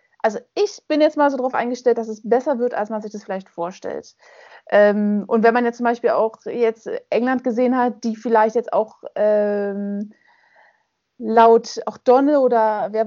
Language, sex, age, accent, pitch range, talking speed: German, female, 20-39, German, 210-250 Hz, 185 wpm